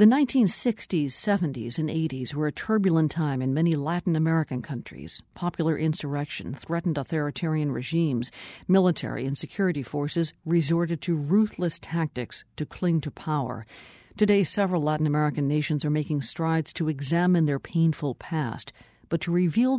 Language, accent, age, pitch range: English, American, 50-69, 145-175 Hz